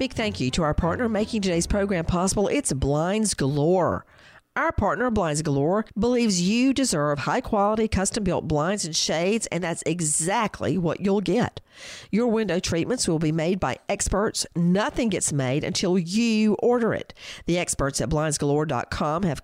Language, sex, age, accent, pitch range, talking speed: English, female, 50-69, American, 150-220 Hz, 155 wpm